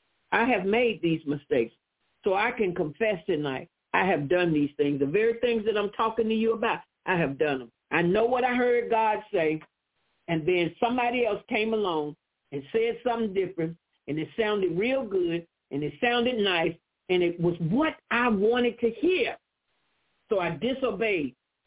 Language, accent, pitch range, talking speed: English, American, 170-245 Hz, 180 wpm